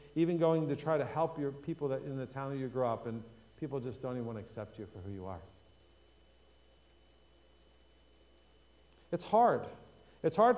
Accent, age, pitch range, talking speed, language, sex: American, 50-69, 110-155 Hz, 185 wpm, English, male